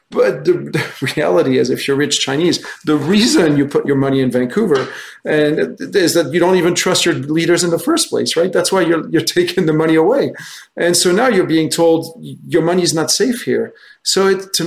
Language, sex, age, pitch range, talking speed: English, male, 40-59, 140-185 Hz, 220 wpm